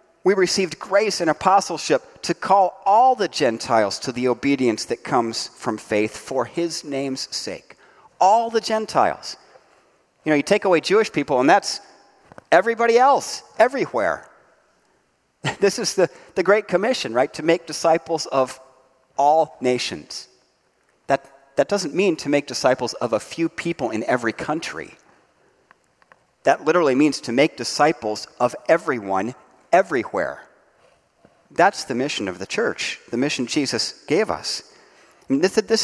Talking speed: 140 wpm